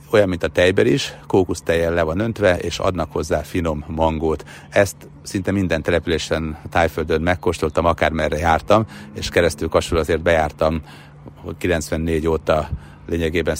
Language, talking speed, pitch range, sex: Hungarian, 140 wpm, 80-95 Hz, male